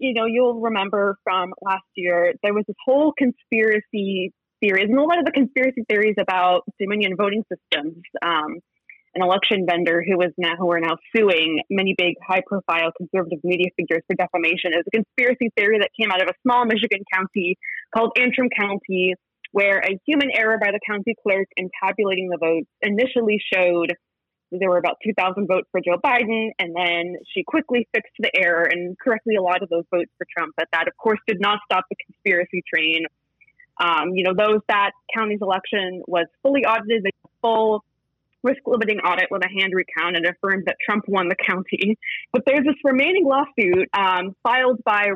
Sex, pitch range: female, 180-225 Hz